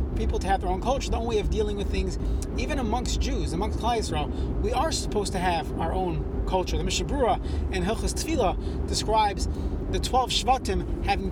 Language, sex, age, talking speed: English, male, 30-49, 190 wpm